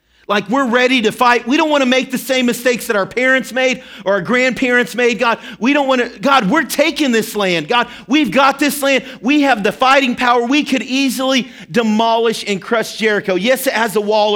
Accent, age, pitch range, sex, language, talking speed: American, 40-59, 190-245 Hz, male, English, 220 wpm